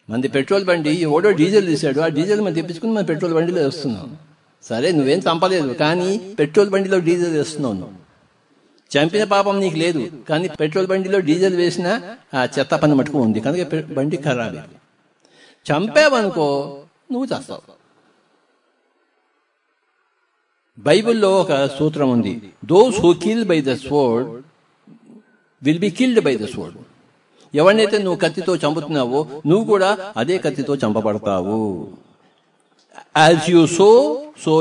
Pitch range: 135-195 Hz